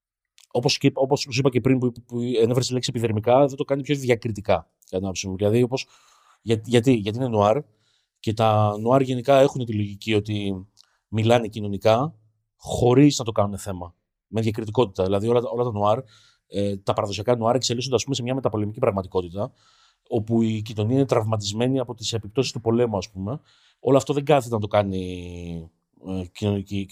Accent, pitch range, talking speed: native, 105-130 Hz, 155 wpm